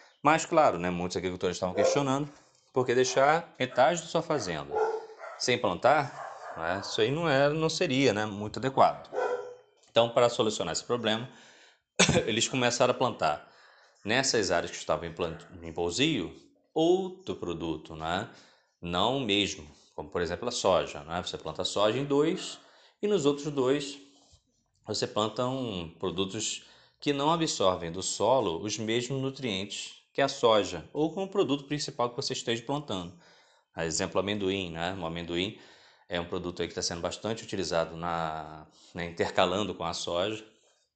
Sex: male